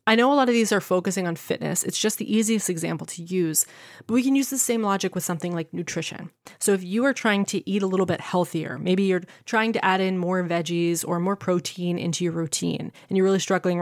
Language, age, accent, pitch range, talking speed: English, 20-39, American, 175-220 Hz, 250 wpm